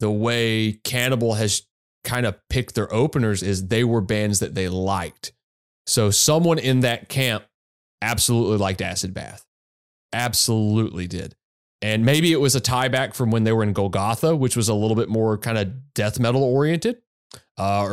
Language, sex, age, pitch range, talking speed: English, male, 30-49, 100-130 Hz, 170 wpm